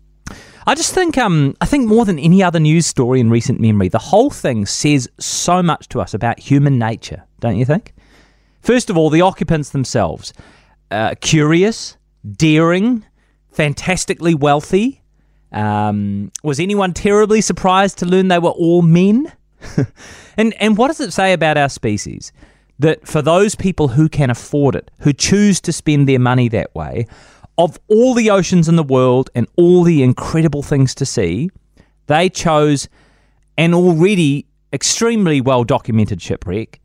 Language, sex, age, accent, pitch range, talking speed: English, male, 30-49, Australian, 115-175 Hz, 160 wpm